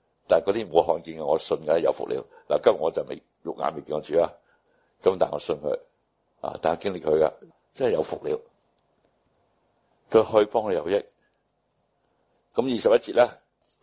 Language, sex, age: Chinese, male, 60-79